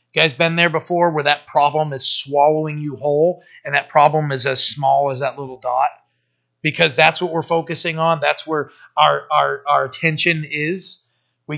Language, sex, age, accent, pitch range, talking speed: English, male, 30-49, American, 125-160 Hz, 185 wpm